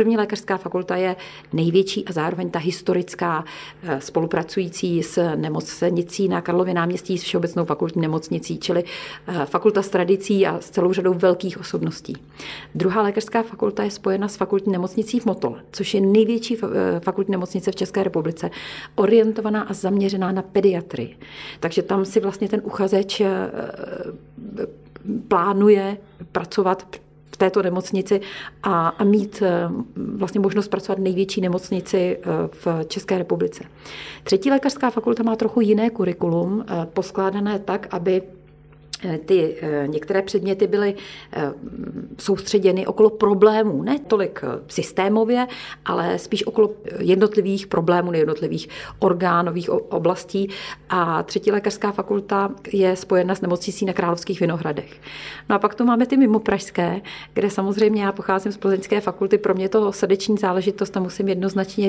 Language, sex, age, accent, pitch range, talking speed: Czech, female, 40-59, native, 185-210 Hz, 135 wpm